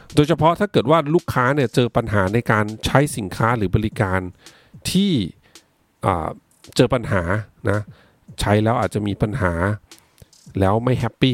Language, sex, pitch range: Thai, male, 100-130 Hz